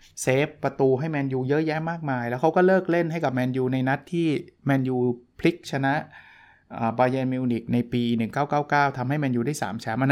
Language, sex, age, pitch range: Thai, male, 20-39, 120-150 Hz